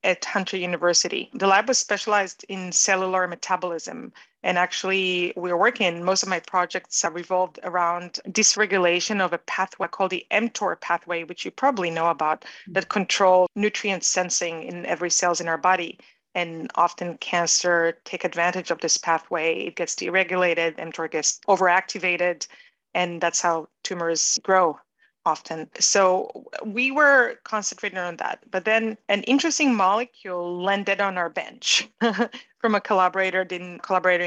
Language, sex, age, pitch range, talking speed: English, female, 30-49, 175-210 Hz, 150 wpm